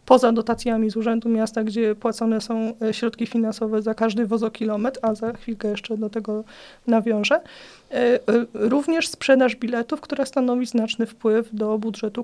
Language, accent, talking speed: Polish, native, 140 wpm